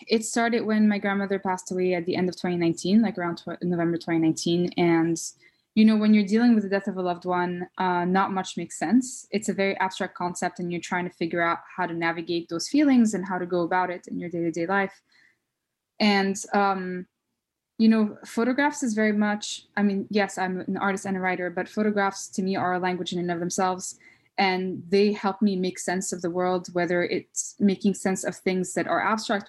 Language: English